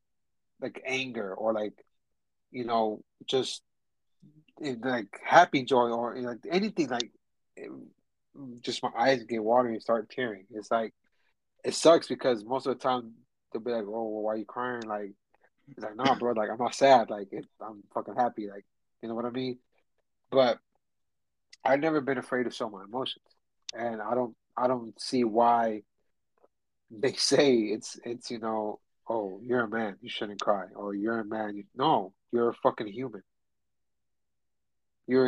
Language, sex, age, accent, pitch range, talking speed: English, male, 30-49, American, 110-130 Hz, 175 wpm